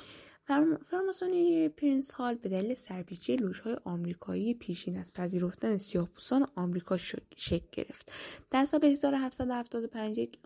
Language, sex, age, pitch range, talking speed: Persian, female, 10-29, 180-250 Hz, 105 wpm